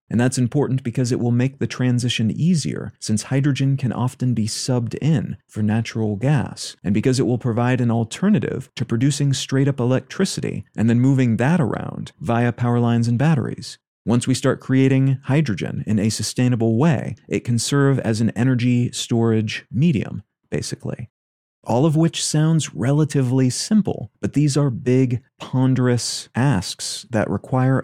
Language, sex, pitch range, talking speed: English, male, 115-140 Hz, 155 wpm